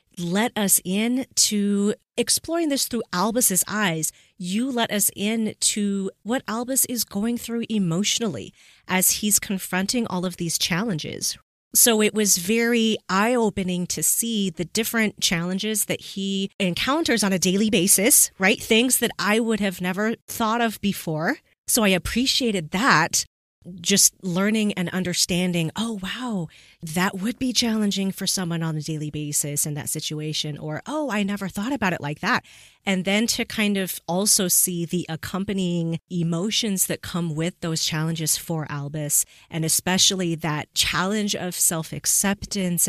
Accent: American